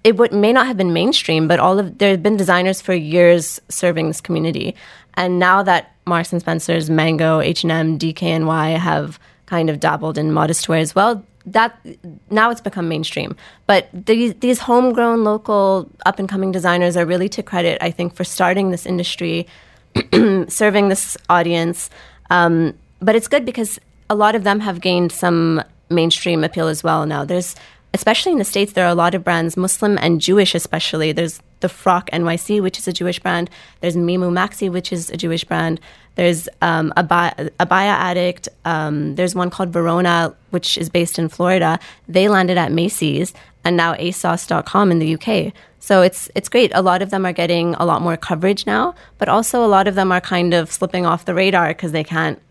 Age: 20-39